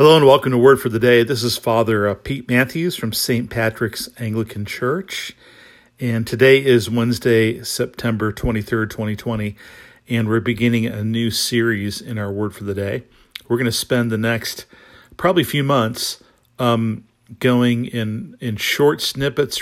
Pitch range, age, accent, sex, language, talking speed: 110-125 Hz, 50-69, American, male, English, 160 wpm